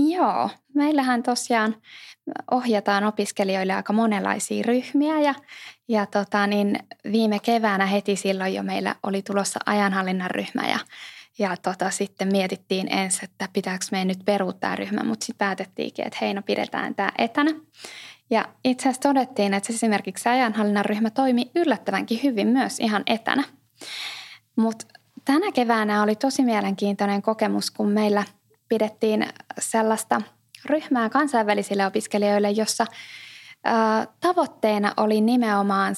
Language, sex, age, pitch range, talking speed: Finnish, female, 20-39, 195-245 Hz, 125 wpm